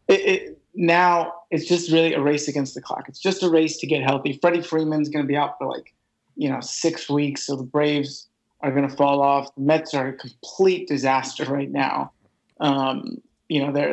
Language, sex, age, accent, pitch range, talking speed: English, male, 30-49, American, 145-165 Hz, 205 wpm